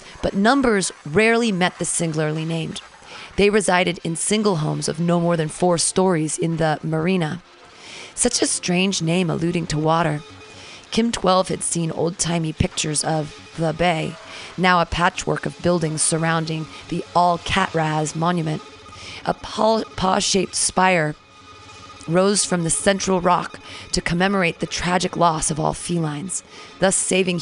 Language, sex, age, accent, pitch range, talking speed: English, female, 30-49, American, 155-180 Hz, 140 wpm